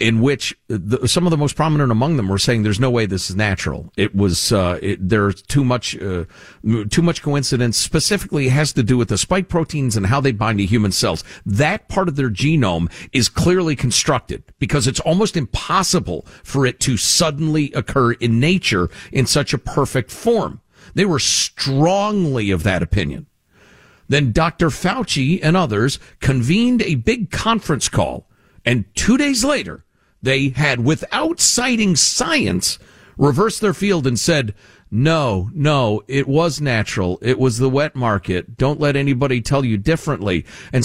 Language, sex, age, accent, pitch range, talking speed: English, male, 50-69, American, 115-175 Hz, 170 wpm